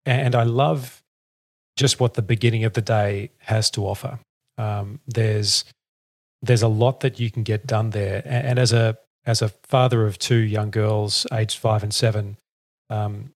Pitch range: 110-125 Hz